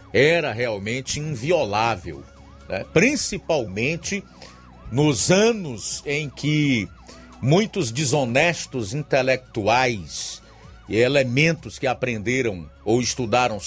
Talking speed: 80 wpm